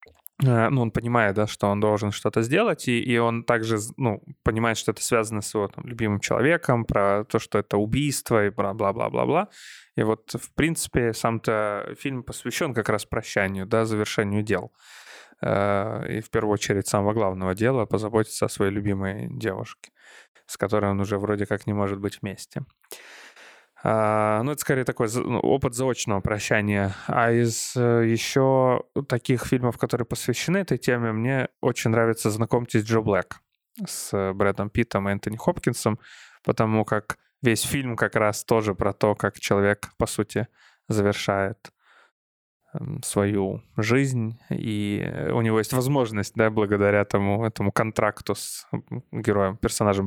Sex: male